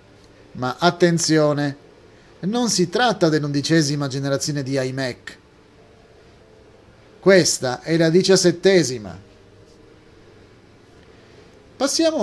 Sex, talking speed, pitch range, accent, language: male, 70 wpm, 120-180 Hz, native, Italian